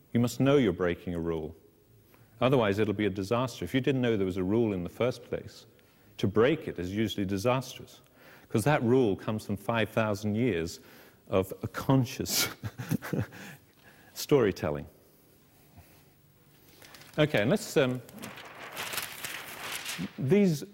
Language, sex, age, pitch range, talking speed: English, male, 40-59, 95-120 Hz, 135 wpm